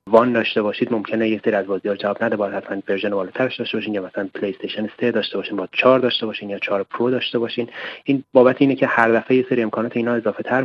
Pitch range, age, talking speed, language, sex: 110-135 Hz, 30-49, 230 wpm, Persian, male